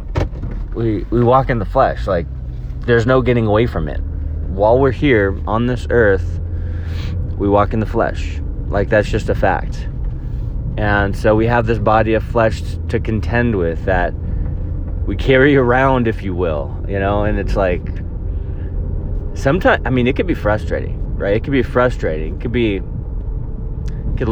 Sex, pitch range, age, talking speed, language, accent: male, 85-115 Hz, 30-49, 170 wpm, English, American